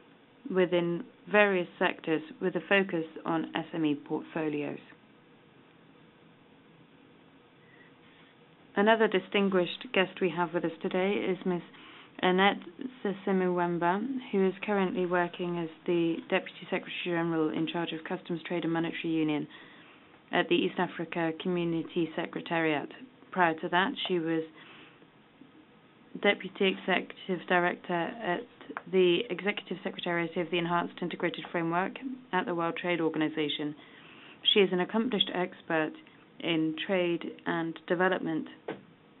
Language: English